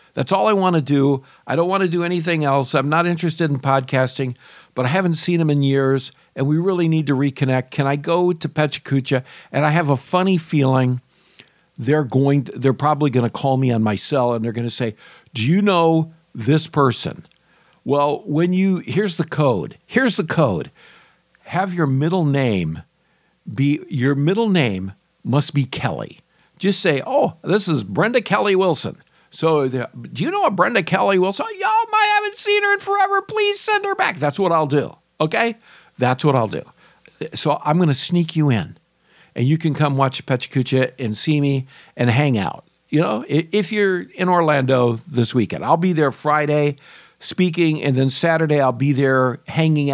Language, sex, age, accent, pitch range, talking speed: English, male, 50-69, American, 130-170 Hz, 195 wpm